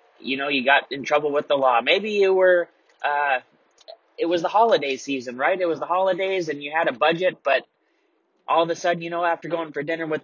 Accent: American